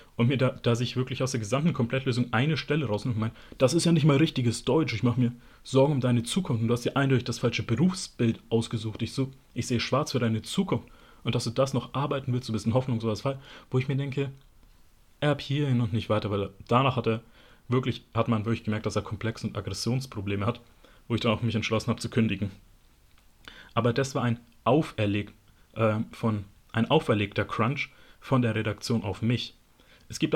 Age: 30-49